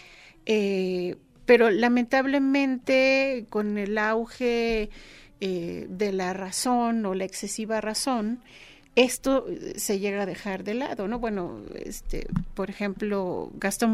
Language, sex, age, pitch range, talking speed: Spanish, female, 40-59, 200-255 Hz, 115 wpm